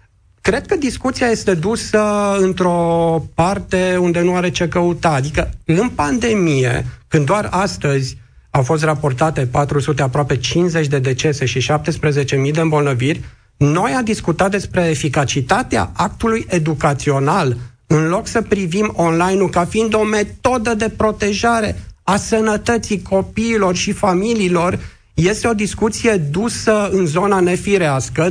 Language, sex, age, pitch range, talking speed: Romanian, male, 40-59, 150-200 Hz, 125 wpm